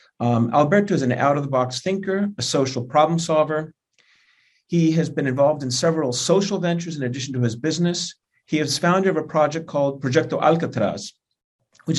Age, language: 50-69, English